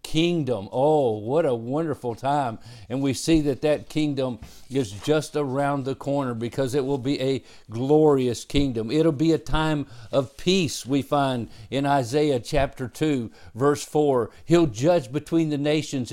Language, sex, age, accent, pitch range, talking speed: English, male, 50-69, American, 125-155 Hz, 160 wpm